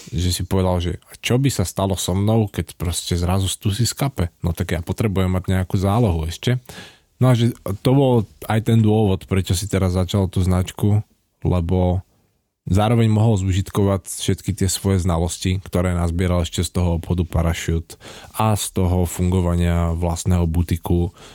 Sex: male